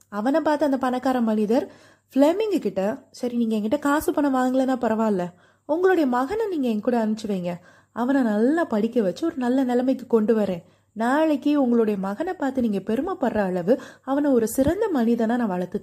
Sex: female